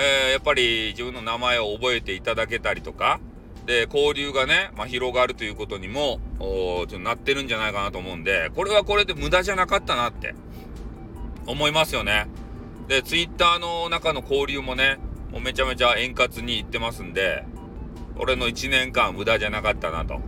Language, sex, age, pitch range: Japanese, male, 40-59, 100-145 Hz